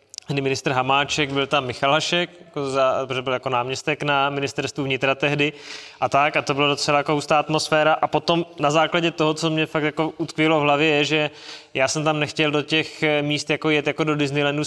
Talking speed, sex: 215 wpm, male